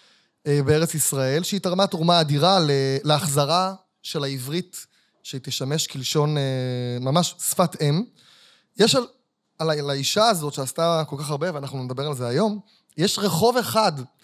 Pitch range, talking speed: 155-205 Hz, 140 wpm